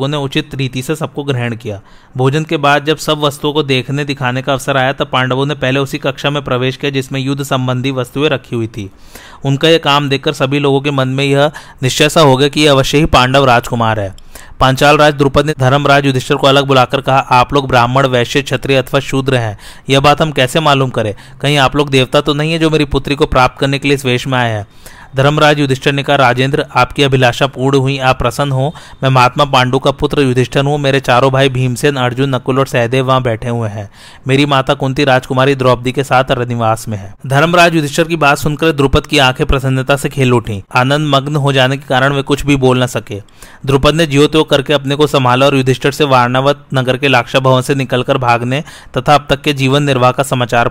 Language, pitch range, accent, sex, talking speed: Hindi, 130-145 Hz, native, male, 160 wpm